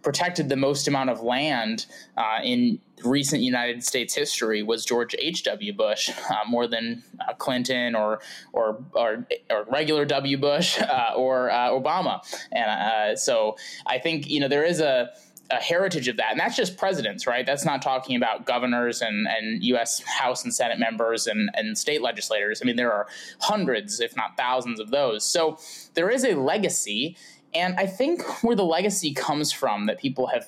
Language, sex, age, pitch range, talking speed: English, male, 20-39, 125-180 Hz, 185 wpm